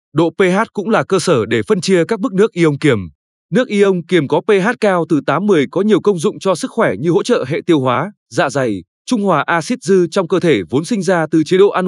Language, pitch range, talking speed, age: Vietnamese, 155-200 Hz, 260 wpm, 20-39